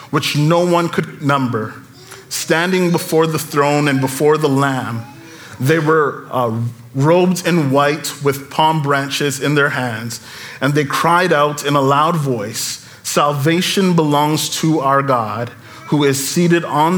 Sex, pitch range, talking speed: male, 130-160 Hz, 150 wpm